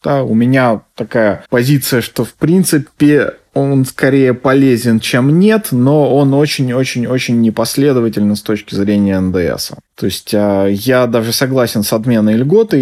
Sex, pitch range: male, 115-140 Hz